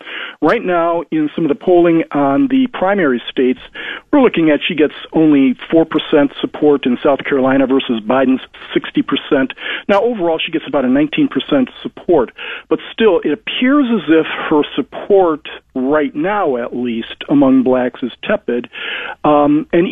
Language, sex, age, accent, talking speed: English, male, 50-69, American, 155 wpm